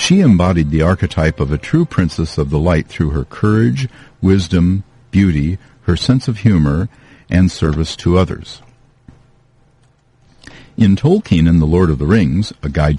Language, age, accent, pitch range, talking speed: English, 50-69, American, 80-115 Hz, 155 wpm